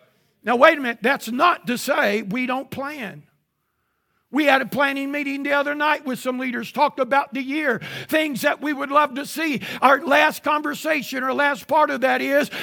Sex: male